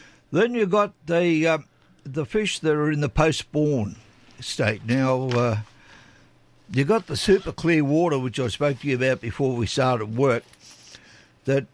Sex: male